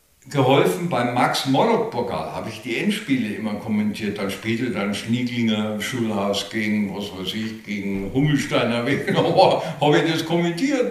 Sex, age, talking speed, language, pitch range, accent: male, 60-79, 140 wpm, German, 100-135 Hz, German